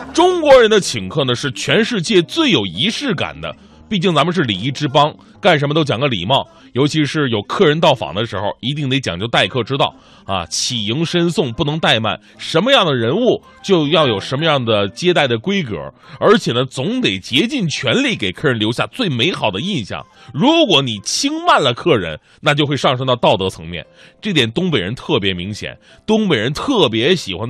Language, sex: Chinese, male